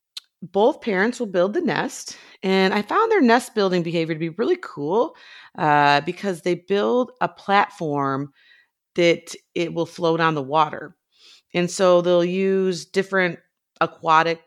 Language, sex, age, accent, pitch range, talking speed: English, female, 30-49, American, 155-195 Hz, 145 wpm